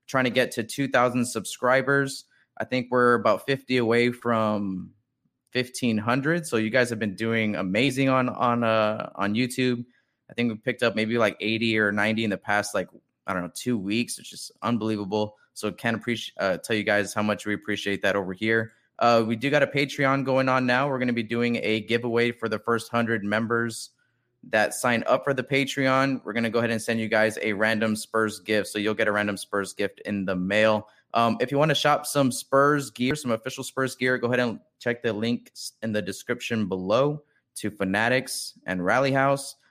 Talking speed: 210 wpm